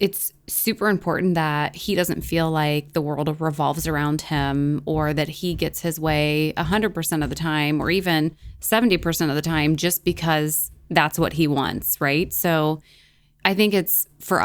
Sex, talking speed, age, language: female, 180 wpm, 20-39, English